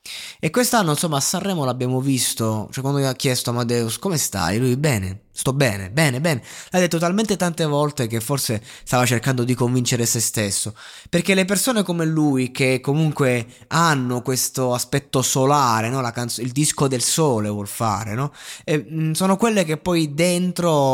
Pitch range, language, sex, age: 120-155 Hz, Italian, male, 20-39